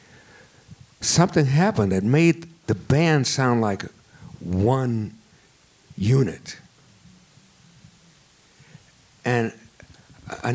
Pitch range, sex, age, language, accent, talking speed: 110-150 Hz, male, 60-79, English, American, 70 wpm